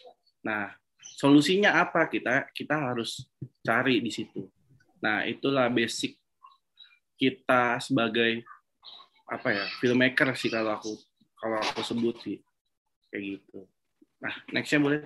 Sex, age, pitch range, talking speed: male, 20-39, 135-175 Hz, 110 wpm